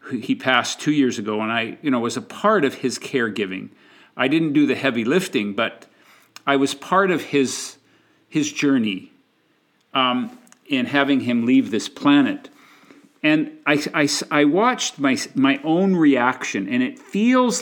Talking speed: 165 wpm